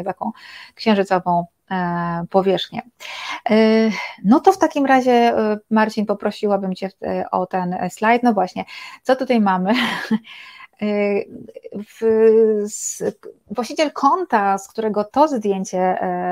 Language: Polish